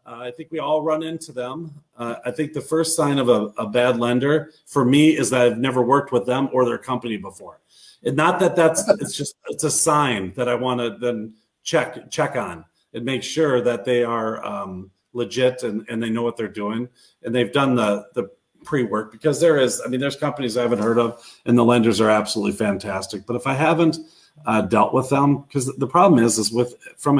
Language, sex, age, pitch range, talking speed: English, male, 40-59, 120-145 Hz, 225 wpm